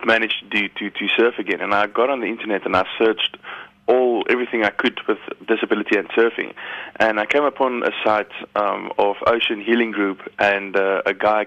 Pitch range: 100-115 Hz